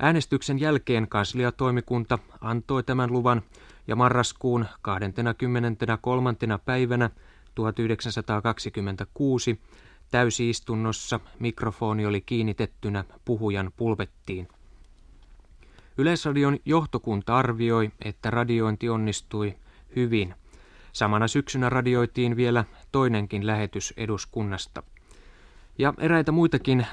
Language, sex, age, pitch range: Finnish, male, 20-39, 105-125 Hz